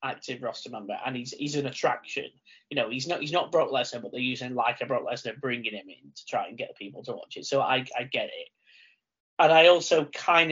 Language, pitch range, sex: English, 115-145 Hz, male